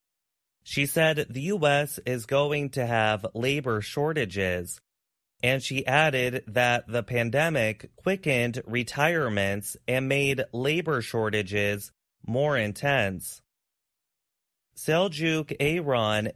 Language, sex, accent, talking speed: English, male, American, 95 wpm